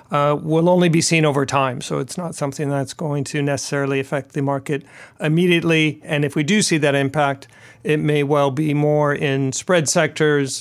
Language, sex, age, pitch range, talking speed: English, male, 40-59, 145-170 Hz, 190 wpm